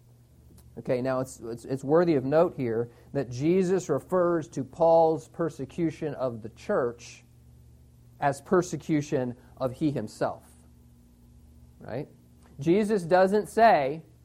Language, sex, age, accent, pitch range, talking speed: English, male, 40-59, American, 125-185 Hz, 115 wpm